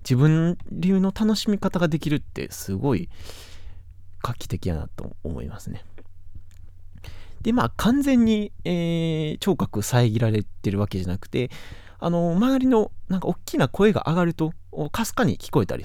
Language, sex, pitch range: Japanese, male, 90-145 Hz